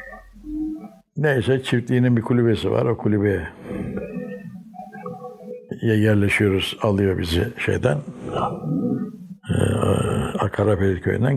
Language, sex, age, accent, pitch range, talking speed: Turkish, male, 60-79, native, 105-170 Hz, 75 wpm